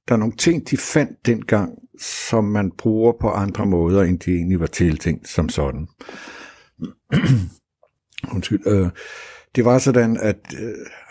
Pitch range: 85-115 Hz